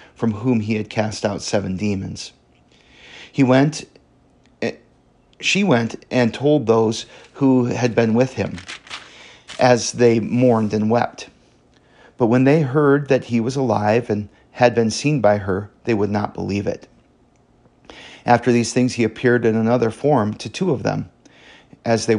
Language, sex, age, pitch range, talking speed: English, male, 40-59, 105-125 Hz, 155 wpm